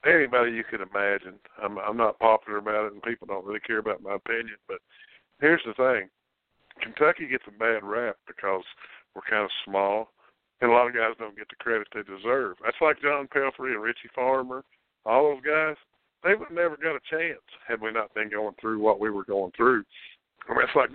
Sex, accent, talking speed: male, American, 215 wpm